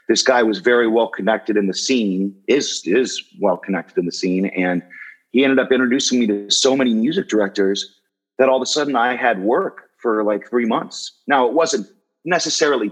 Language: English